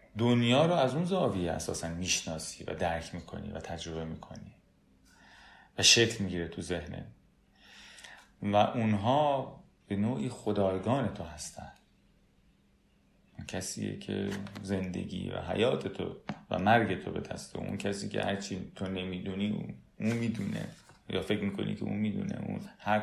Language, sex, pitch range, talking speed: Persian, male, 85-105 Hz, 135 wpm